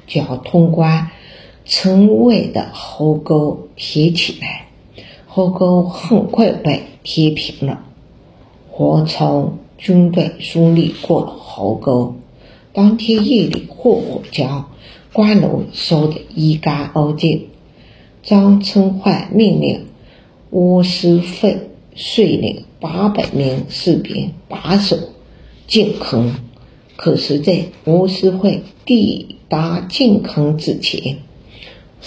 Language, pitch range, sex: Chinese, 150-190 Hz, female